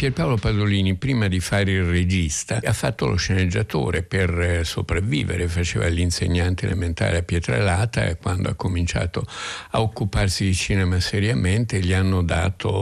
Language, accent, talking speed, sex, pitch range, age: Italian, native, 145 wpm, male, 90-105 Hz, 60-79